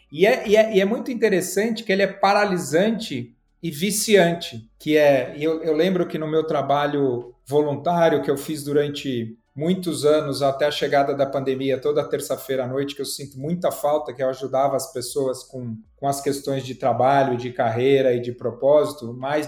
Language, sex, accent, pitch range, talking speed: Portuguese, male, Brazilian, 135-180 Hz, 190 wpm